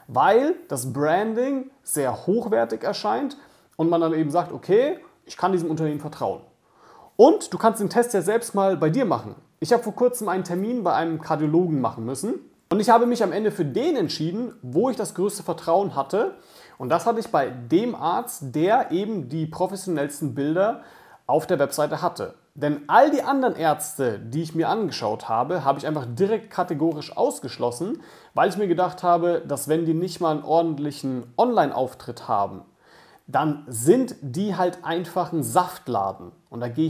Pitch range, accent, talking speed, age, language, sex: 150-200 Hz, German, 180 wpm, 40-59, German, male